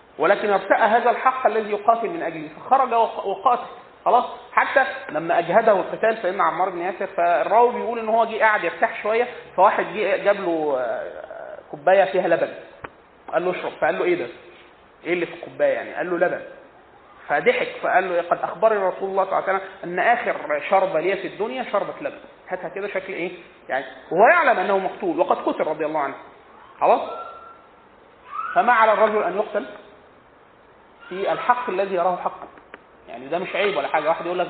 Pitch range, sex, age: 185-230 Hz, male, 30-49